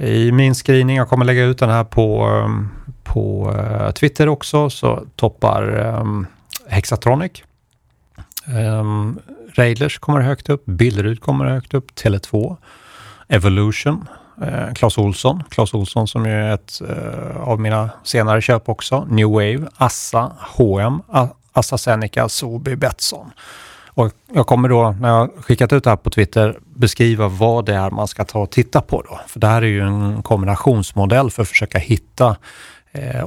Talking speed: 150 wpm